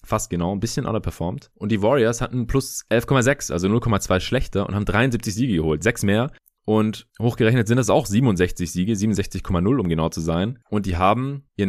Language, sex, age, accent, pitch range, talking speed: German, male, 20-39, German, 85-115 Hz, 190 wpm